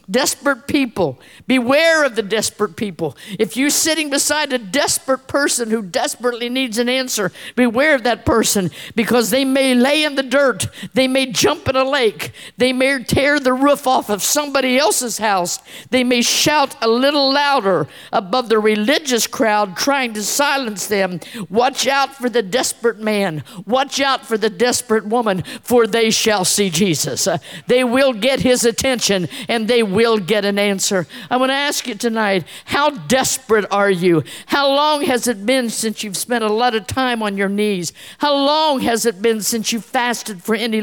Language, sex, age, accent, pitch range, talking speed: English, female, 50-69, American, 205-265 Hz, 180 wpm